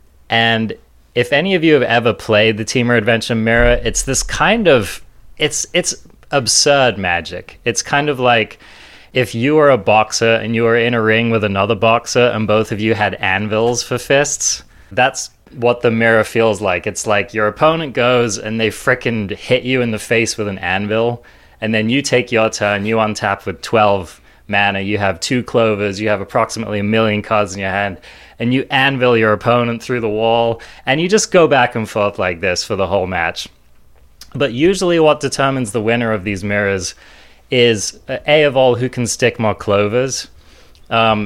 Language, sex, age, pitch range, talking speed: English, male, 20-39, 100-120 Hz, 190 wpm